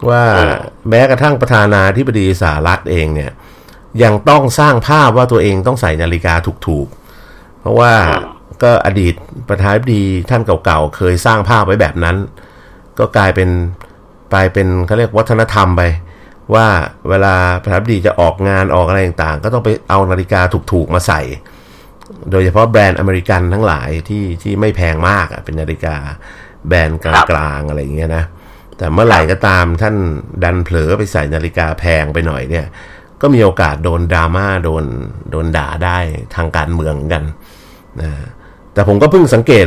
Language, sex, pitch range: Thai, male, 85-110 Hz